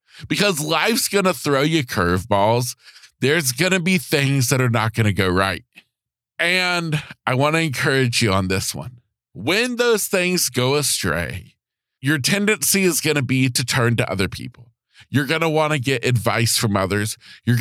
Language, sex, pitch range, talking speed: English, male, 115-155 Hz, 185 wpm